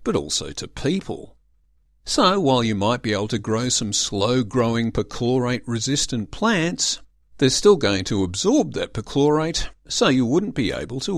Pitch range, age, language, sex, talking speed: 110-145 Hz, 50-69, English, male, 155 wpm